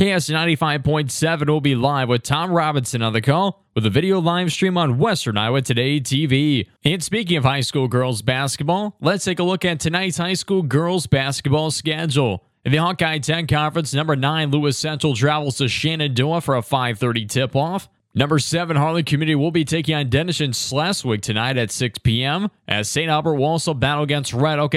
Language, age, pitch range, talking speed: English, 20-39, 135-170 Hz, 190 wpm